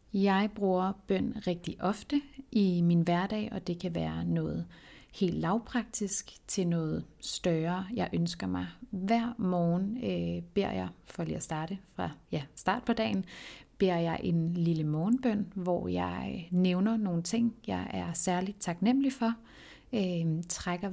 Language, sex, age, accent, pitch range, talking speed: Danish, female, 30-49, native, 175-215 Hz, 150 wpm